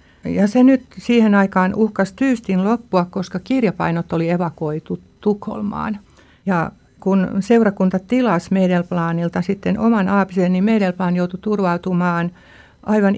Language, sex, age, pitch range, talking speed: Finnish, female, 60-79, 180-210 Hz, 120 wpm